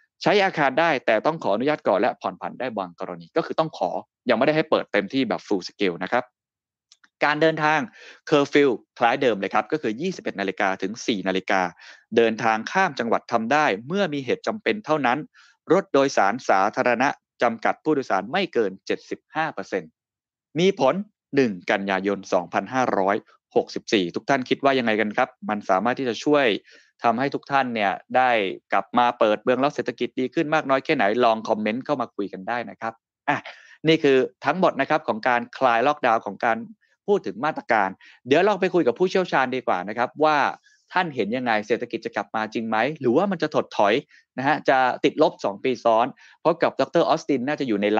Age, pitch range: 20-39, 110-155 Hz